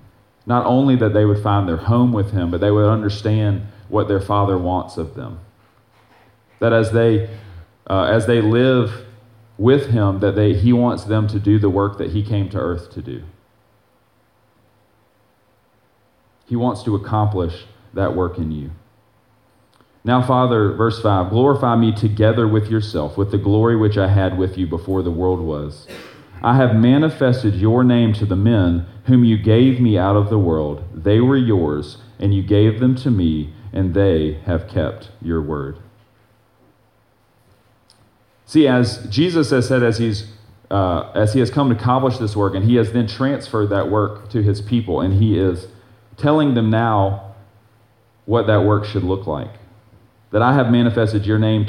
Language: English